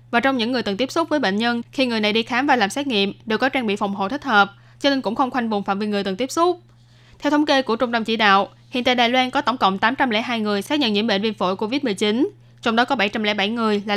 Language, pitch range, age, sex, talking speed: Vietnamese, 205-250 Hz, 10-29, female, 295 wpm